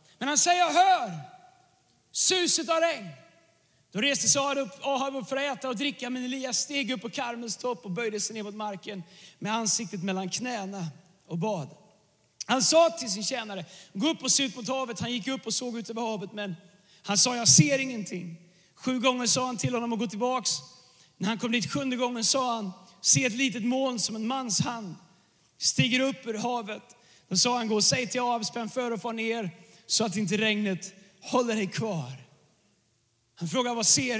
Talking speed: 205 wpm